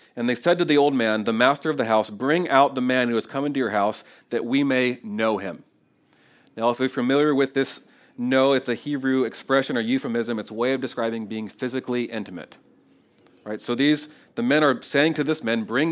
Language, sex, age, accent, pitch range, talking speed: English, male, 40-59, American, 110-140 Hz, 220 wpm